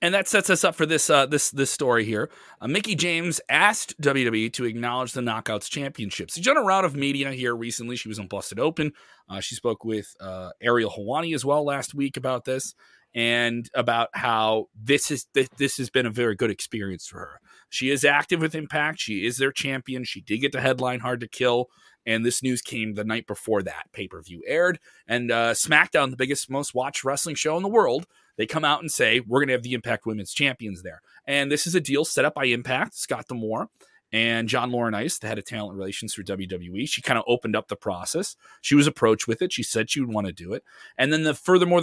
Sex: male